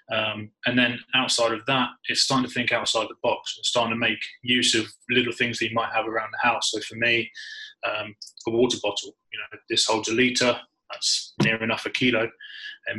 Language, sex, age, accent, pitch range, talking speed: English, male, 20-39, British, 110-125 Hz, 215 wpm